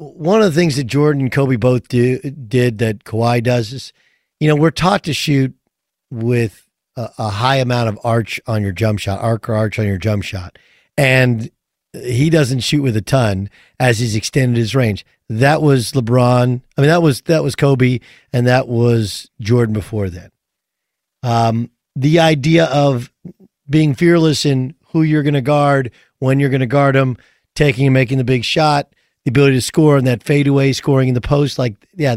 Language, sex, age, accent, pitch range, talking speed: English, male, 50-69, American, 120-155 Hz, 195 wpm